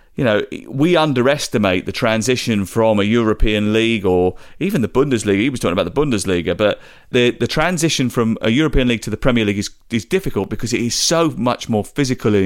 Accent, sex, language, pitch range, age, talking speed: British, male, English, 105-140 Hz, 30-49, 205 wpm